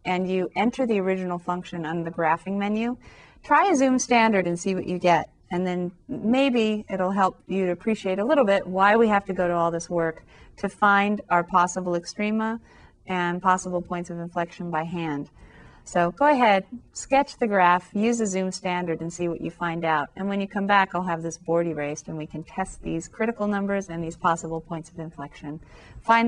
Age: 30-49